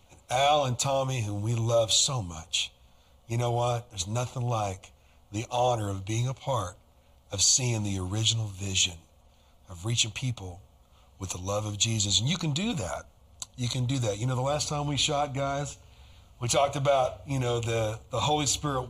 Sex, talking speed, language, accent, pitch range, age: male, 185 wpm, English, American, 105-165 Hz, 40-59